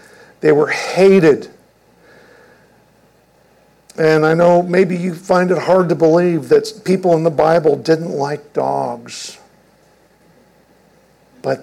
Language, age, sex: English, 50-69, male